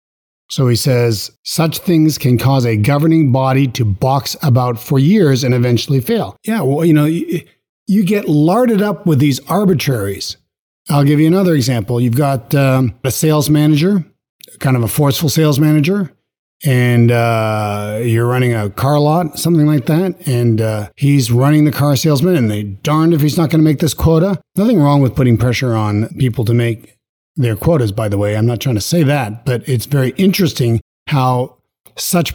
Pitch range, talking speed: 120-160 Hz, 185 wpm